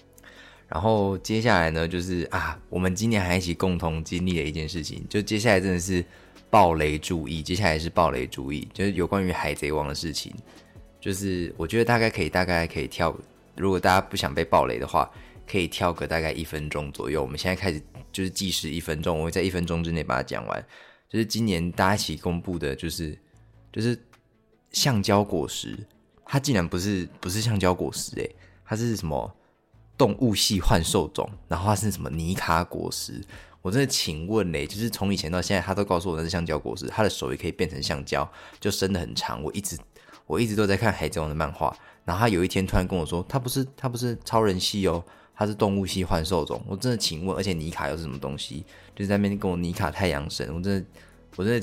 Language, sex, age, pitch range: Chinese, male, 20-39, 80-105 Hz